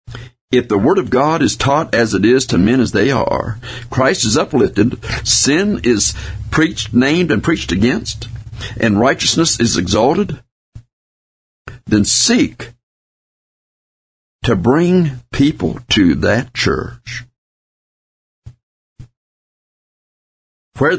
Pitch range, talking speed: 100-125 Hz, 110 wpm